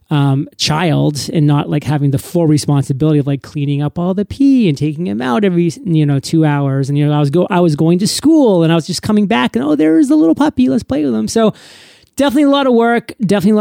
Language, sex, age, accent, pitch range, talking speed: English, male, 30-49, American, 150-195 Hz, 260 wpm